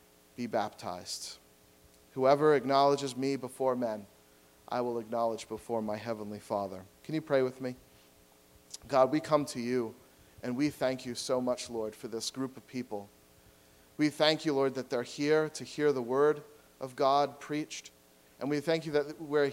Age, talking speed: 40-59, 170 wpm